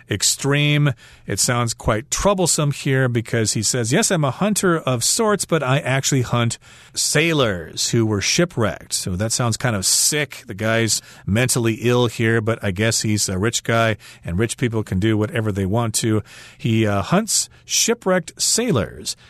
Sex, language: male, Chinese